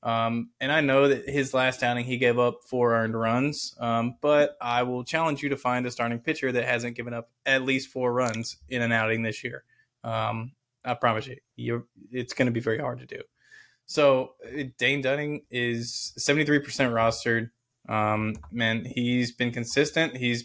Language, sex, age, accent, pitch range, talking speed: English, male, 20-39, American, 115-130 Hz, 180 wpm